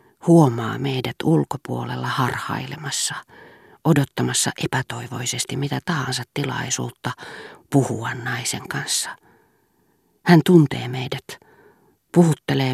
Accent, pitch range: native, 130-170 Hz